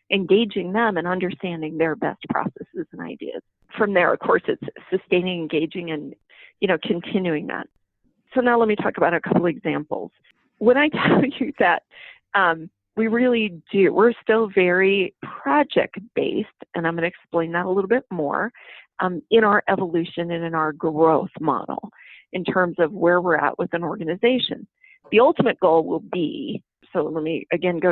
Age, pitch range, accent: 40-59, 170-225 Hz, American